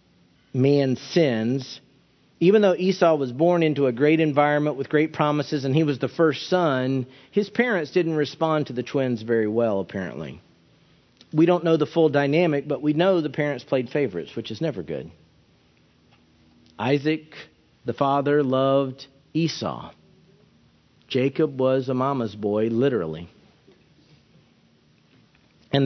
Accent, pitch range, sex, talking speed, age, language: American, 120-150 Hz, male, 135 wpm, 50-69, English